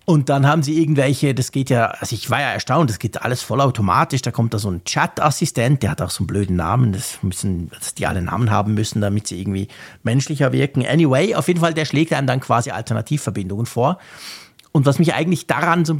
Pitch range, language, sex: 115-150 Hz, German, male